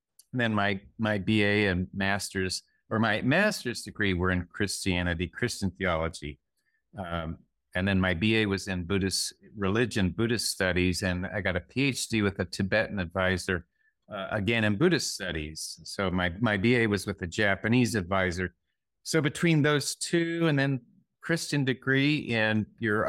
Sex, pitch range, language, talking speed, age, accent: male, 95-135 Hz, English, 155 wpm, 50-69, American